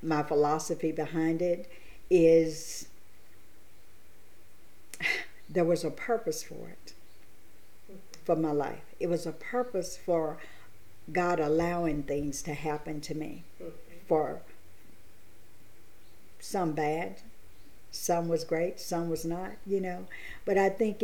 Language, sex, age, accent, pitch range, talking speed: English, female, 50-69, American, 155-195 Hz, 115 wpm